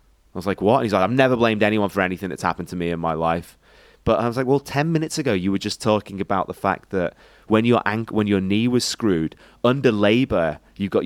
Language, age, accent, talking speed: English, 30-49, British, 260 wpm